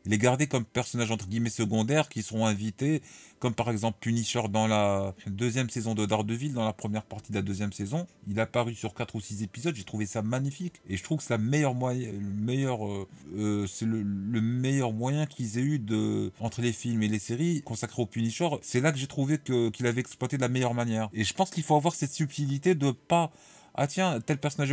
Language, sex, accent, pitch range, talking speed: French, male, French, 110-140 Hz, 240 wpm